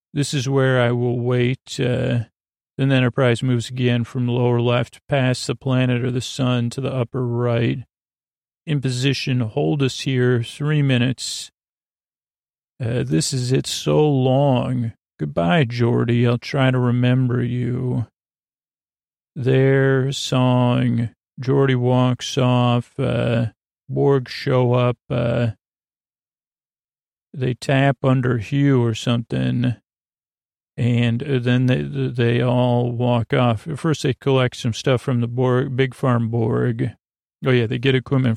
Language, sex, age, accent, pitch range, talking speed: English, male, 40-59, American, 120-135 Hz, 135 wpm